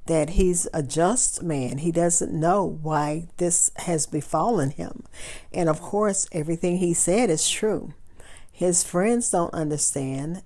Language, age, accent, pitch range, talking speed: English, 50-69, American, 150-175 Hz, 145 wpm